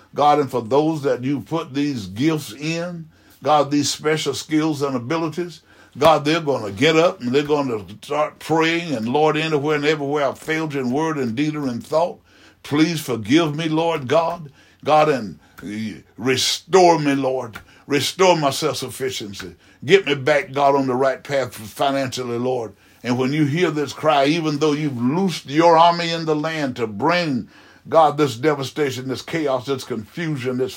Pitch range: 125-155 Hz